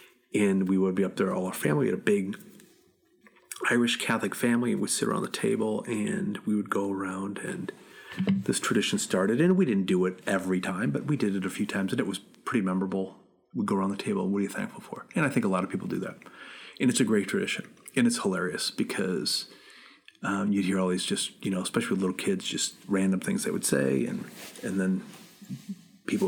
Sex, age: male, 40-59